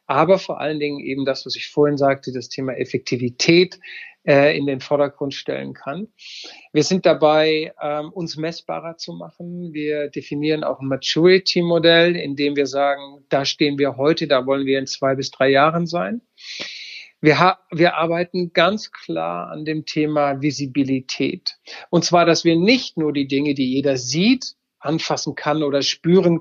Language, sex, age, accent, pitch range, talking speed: German, male, 50-69, German, 145-180 Hz, 165 wpm